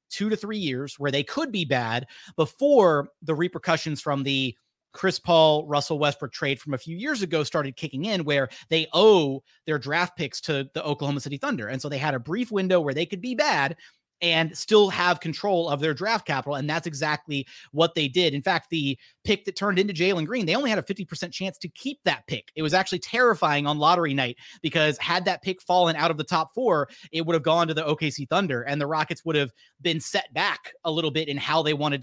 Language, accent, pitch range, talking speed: English, American, 145-175 Hz, 230 wpm